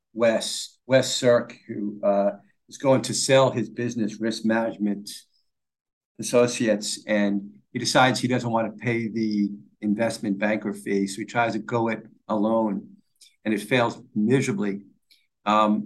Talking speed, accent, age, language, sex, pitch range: 145 wpm, American, 50-69, English, male, 105-135 Hz